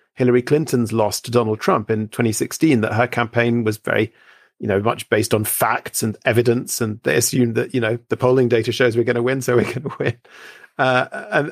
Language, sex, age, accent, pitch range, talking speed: English, male, 40-59, British, 115-135 Hz, 210 wpm